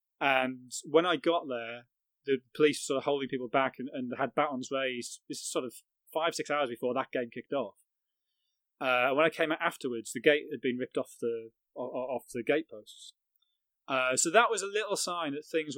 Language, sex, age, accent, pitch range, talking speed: English, male, 30-49, British, 125-155 Hz, 215 wpm